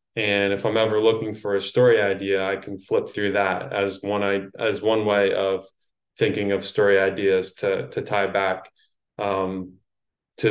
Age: 20-39